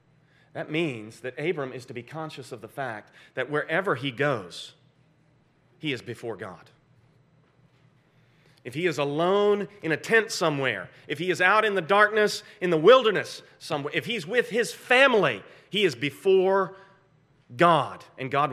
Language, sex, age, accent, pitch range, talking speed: English, male, 40-59, American, 135-175 Hz, 160 wpm